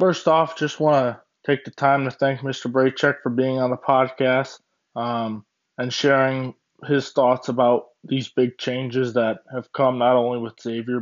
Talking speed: 180 wpm